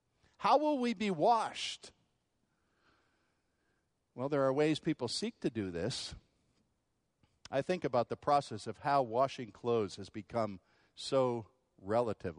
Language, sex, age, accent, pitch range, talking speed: English, male, 50-69, American, 115-180 Hz, 130 wpm